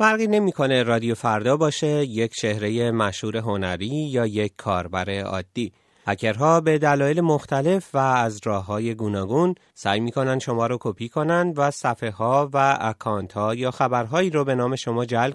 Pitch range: 115-160 Hz